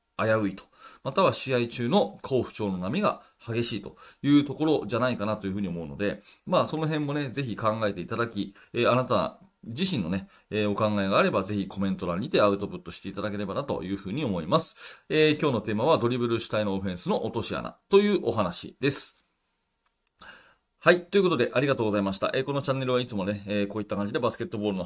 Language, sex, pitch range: Japanese, male, 100-140 Hz